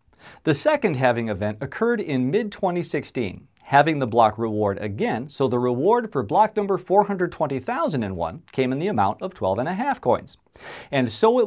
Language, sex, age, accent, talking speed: English, male, 40-59, American, 150 wpm